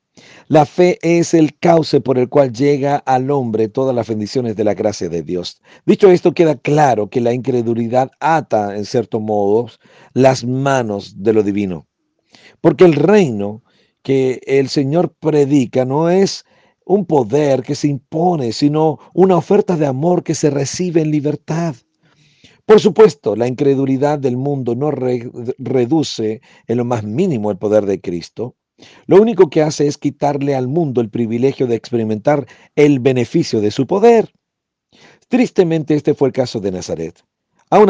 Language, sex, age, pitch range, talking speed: Spanish, male, 50-69, 110-160 Hz, 160 wpm